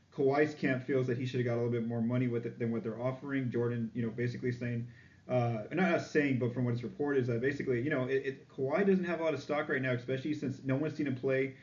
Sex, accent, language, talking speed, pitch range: male, American, English, 285 wpm, 120-135 Hz